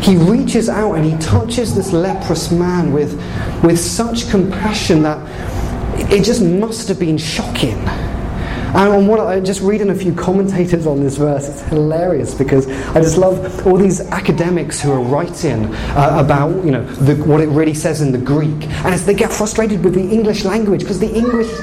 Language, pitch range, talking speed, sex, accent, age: English, 150-210 Hz, 185 wpm, male, British, 30-49